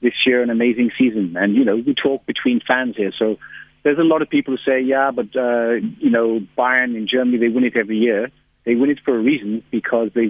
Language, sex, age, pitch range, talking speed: English, male, 50-69, 115-130 Hz, 245 wpm